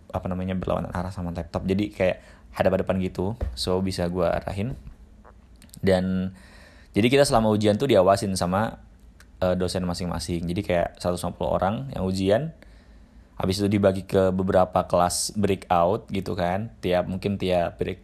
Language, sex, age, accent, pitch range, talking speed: Indonesian, male, 20-39, native, 90-110 Hz, 145 wpm